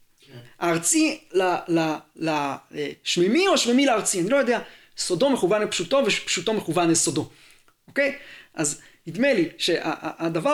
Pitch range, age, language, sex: 165-235 Hz, 30-49, Hebrew, male